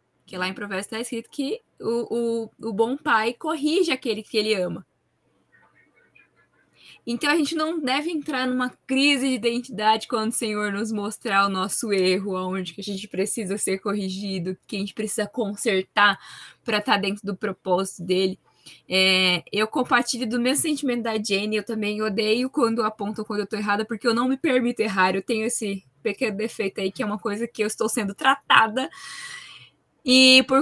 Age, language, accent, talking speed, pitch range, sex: 10-29, Portuguese, Brazilian, 180 wpm, 205-275 Hz, female